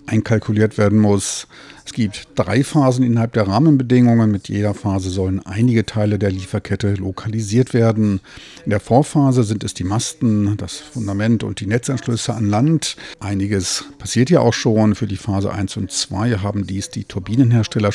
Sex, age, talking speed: male, 50-69, 165 wpm